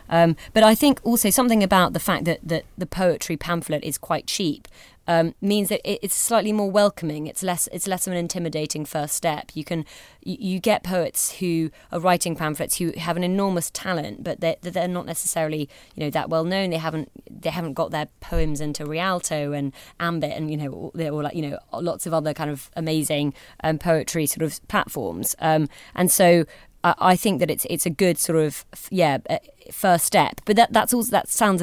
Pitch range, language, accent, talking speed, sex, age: 155-180 Hz, English, British, 210 wpm, female, 20-39